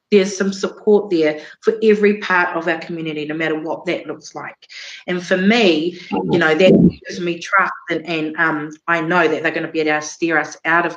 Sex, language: female, English